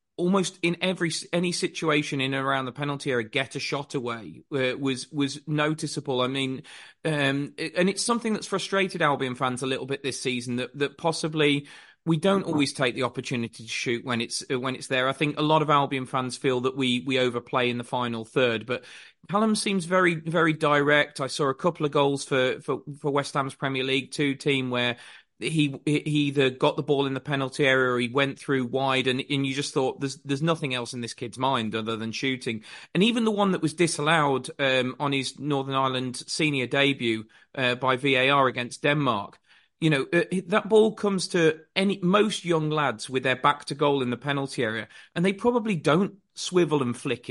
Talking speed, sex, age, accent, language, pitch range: 215 wpm, male, 30-49, British, English, 130-165 Hz